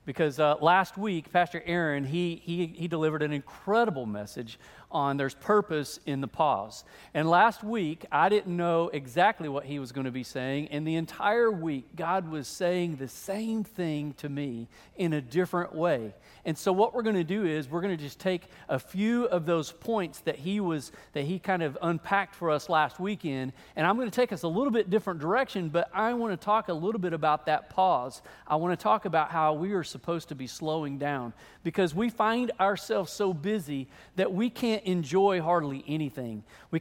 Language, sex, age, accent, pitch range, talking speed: English, male, 40-59, American, 150-195 Hz, 205 wpm